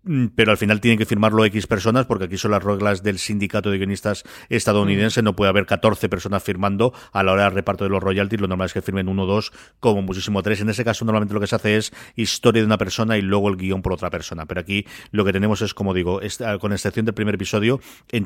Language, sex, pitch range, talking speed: Spanish, male, 100-120 Hz, 250 wpm